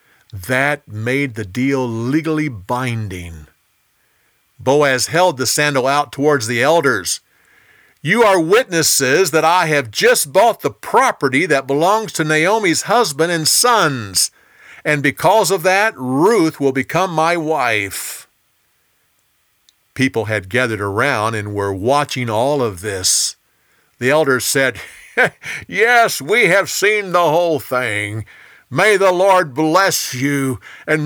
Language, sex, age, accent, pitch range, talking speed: English, male, 50-69, American, 115-165 Hz, 130 wpm